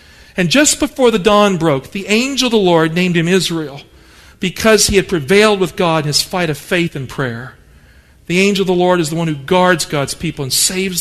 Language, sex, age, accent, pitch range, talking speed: English, male, 50-69, American, 150-200 Hz, 225 wpm